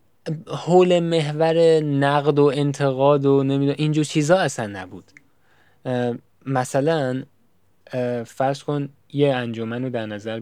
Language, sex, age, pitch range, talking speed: Persian, male, 10-29, 115-150 Hz, 110 wpm